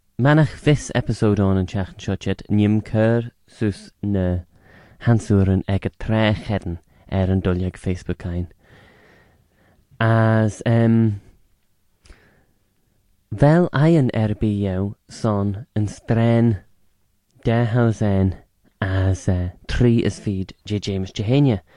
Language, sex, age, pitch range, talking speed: English, male, 20-39, 95-115 Hz, 110 wpm